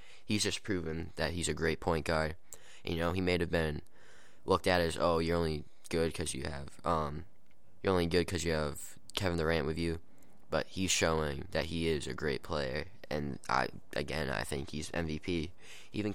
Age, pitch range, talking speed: 20-39, 80-90 Hz, 195 wpm